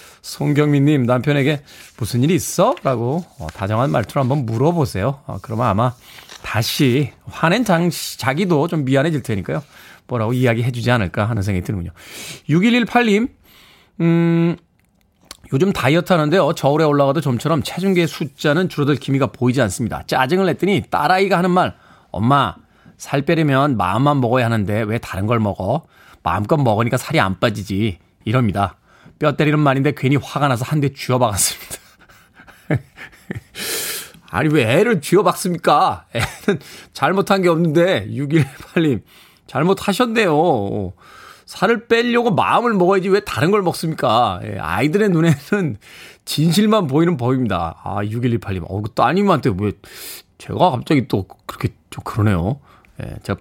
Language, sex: Korean, male